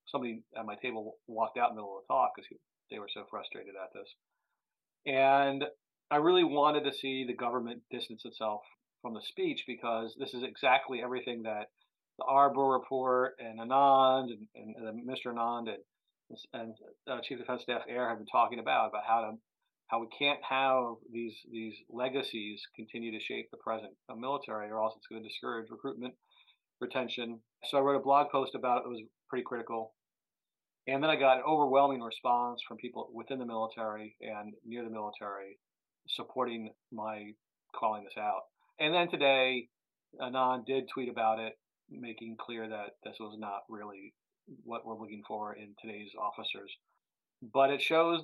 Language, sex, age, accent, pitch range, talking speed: English, male, 40-59, American, 110-135 Hz, 175 wpm